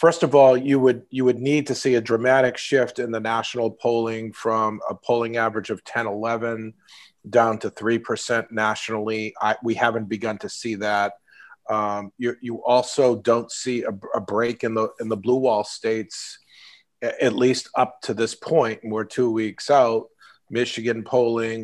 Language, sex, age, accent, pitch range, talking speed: English, male, 40-59, American, 110-120 Hz, 175 wpm